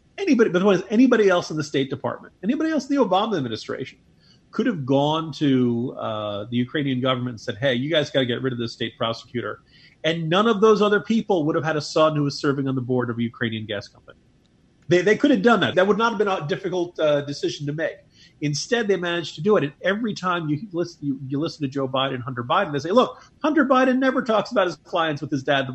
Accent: American